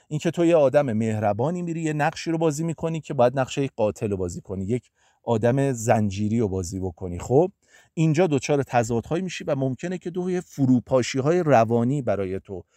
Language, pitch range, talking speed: Persian, 110-165 Hz, 185 wpm